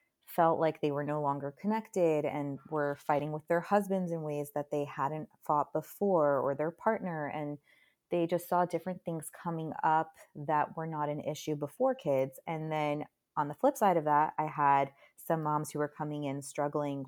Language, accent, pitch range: English, American, 145-170 Hz